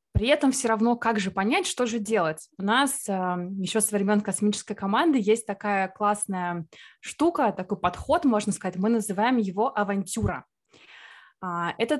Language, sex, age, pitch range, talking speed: Russian, female, 20-39, 200-255 Hz, 150 wpm